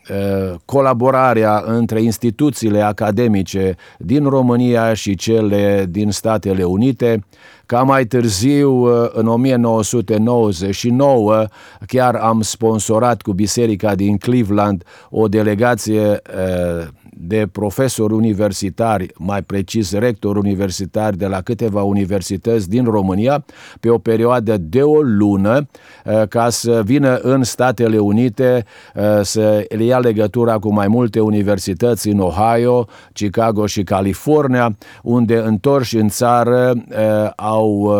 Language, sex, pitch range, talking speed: Romanian, male, 105-120 Hz, 105 wpm